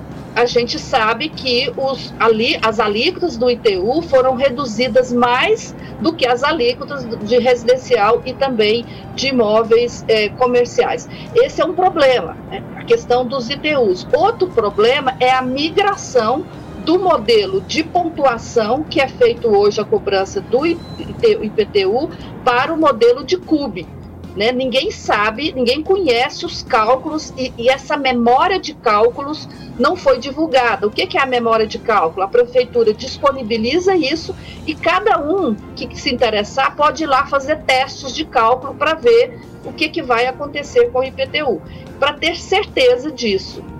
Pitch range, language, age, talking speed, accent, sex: 250-365 Hz, Portuguese, 40-59, 150 wpm, Brazilian, female